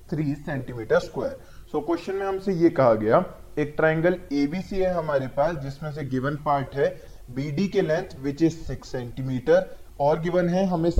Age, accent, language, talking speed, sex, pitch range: 20-39, native, Hindi, 135 wpm, male, 140-175 Hz